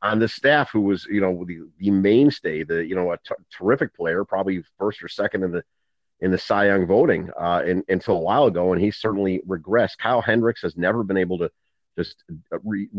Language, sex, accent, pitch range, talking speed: English, male, American, 90-110 Hz, 215 wpm